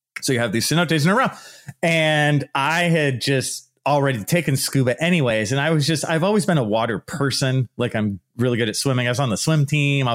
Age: 30-49